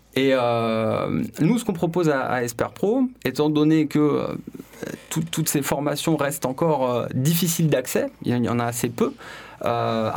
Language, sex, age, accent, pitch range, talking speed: French, male, 20-39, French, 120-150 Hz, 165 wpm